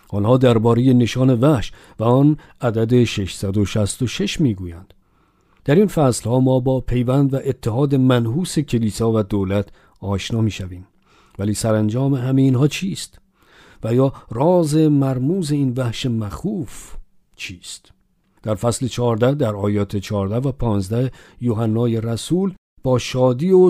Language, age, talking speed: Persian, 50-69, 130 wpm